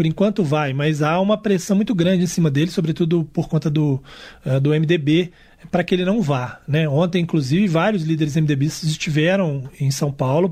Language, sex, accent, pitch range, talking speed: Portuguese, male, Brazilian, 145-175 Hz, 190 wpm